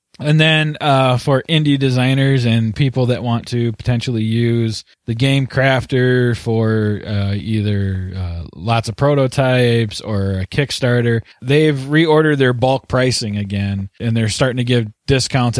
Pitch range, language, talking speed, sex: 110-130 Hz, English, 145 wpm, male